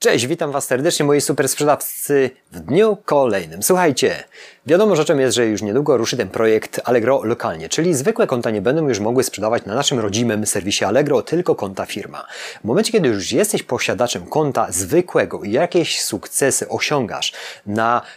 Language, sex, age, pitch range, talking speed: Polish, male, 30-49, 115-145 Hz, 170 wpm